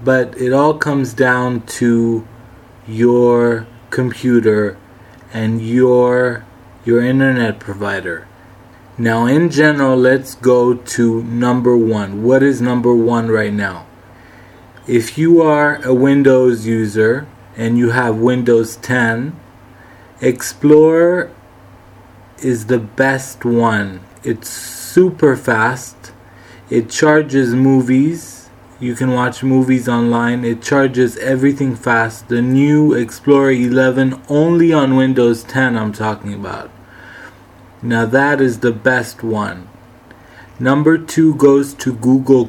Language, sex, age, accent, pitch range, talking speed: English, male, 20-39, American, 115-130 Hz, 115 wpm